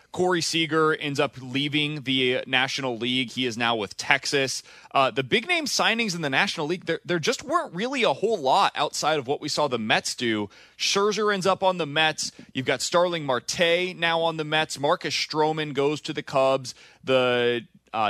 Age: 20-39